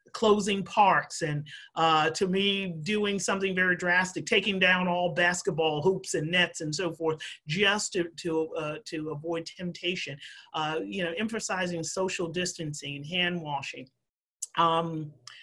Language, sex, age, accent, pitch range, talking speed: English, male, 40-59, American, 155-190 Hz, 140 wpm